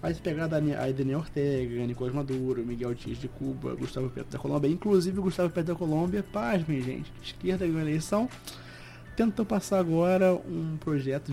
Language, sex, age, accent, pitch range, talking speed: Portuguese, male, 20-39, Brazilian, 130-155 Hz, 175 wpm